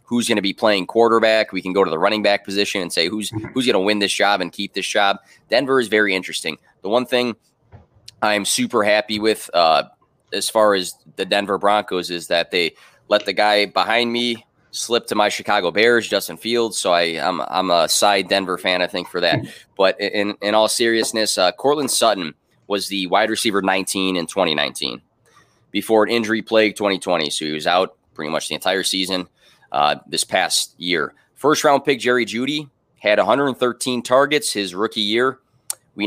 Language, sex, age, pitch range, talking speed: English, male, 20-39, 95-115 Hz, 195 wpm